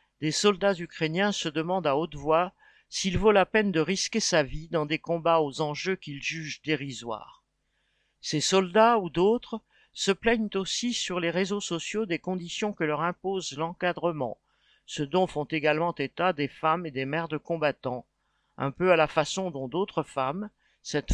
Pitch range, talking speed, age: 155-195 Hz, 175 wpm, 50-69